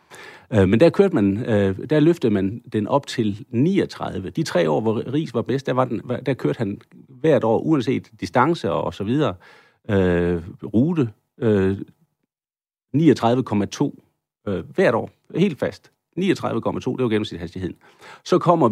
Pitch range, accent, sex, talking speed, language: 95-130 Hz, native, male, 150 wpm, Danish